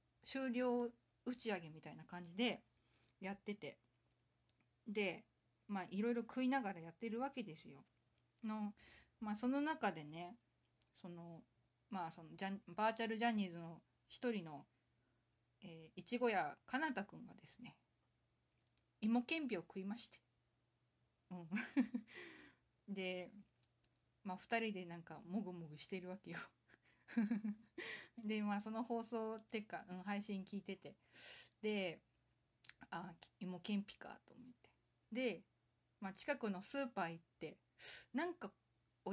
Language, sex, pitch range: Japanese, female, 170-230 Hz